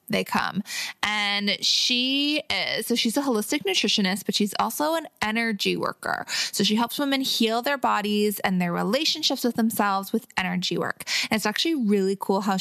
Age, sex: 20-39, female